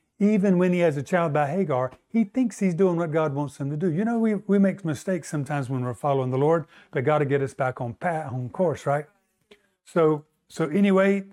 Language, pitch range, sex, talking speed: English, 140-195 Hz, male, 235 wpm